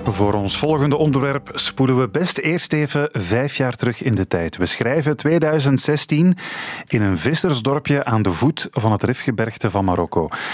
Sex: male